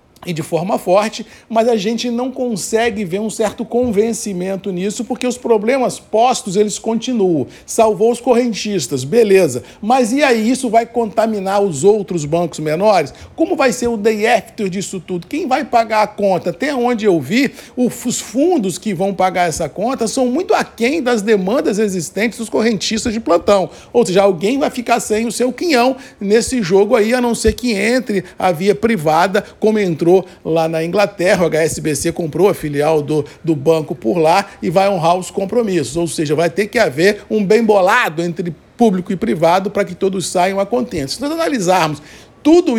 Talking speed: 180 wpm